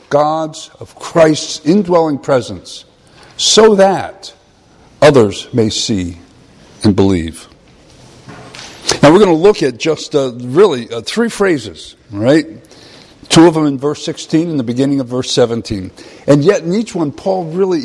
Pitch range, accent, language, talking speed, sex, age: 115-165 Hz, American, English, 150 wpm, male, 50-69